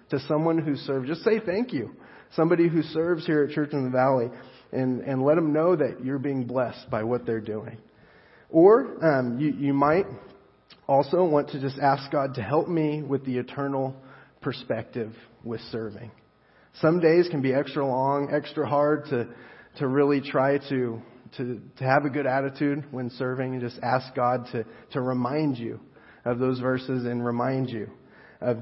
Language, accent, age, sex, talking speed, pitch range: English, American, 30-49, male, 180 wpm, 115-140 Hz